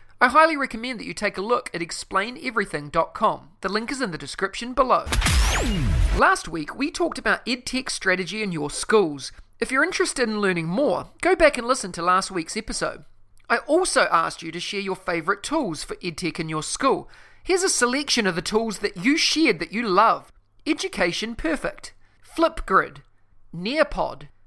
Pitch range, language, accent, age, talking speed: 180-280 Hz, English, Australian, 30-49, 175 wpm